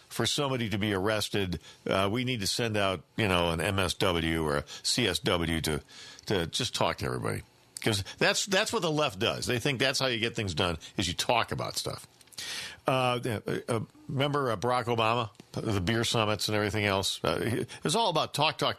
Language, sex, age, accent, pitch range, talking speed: English, male, 50-69, American, 95-130 Hz, 200 wpm